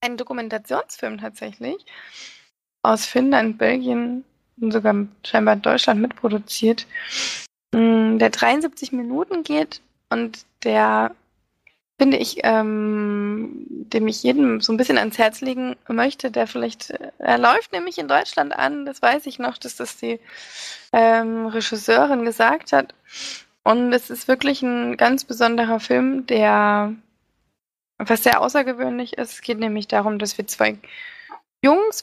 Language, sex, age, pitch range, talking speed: German, female, 20-39, 215-260 Hz, 130 wpm